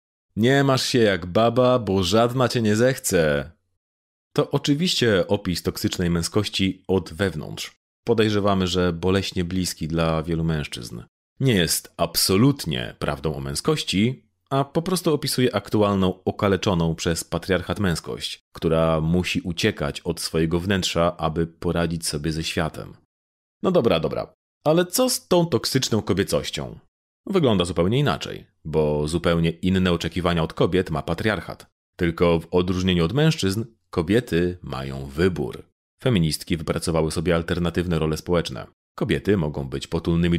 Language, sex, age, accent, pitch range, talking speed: Polish, male, 30-49, native, 80-105 Hz, 130 wpm